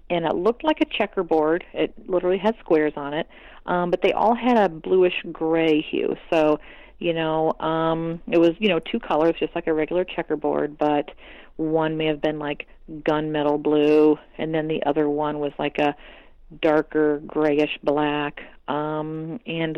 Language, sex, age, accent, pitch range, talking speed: English, female, 40-59, American, 150-170 Hz, 175 wpm